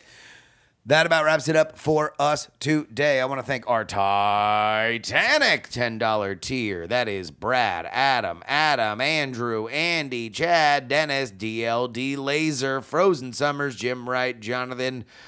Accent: American